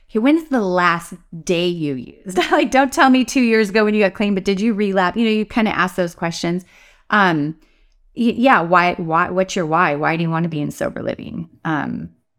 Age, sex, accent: 30-49, female, American